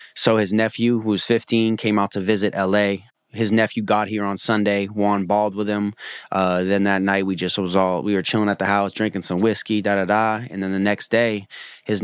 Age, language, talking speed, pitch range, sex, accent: 20-39, English, 225 wpm, 95-110 Hz, male, American